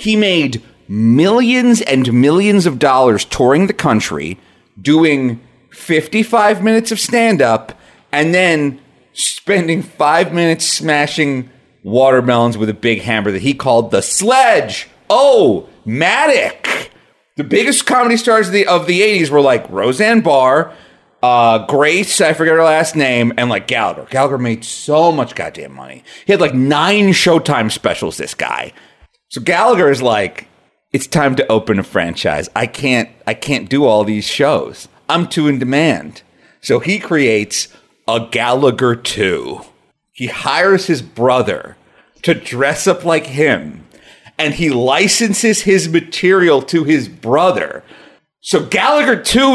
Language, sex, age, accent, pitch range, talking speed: English, male, 30-49, American, 135-215 Hz, 140 wpm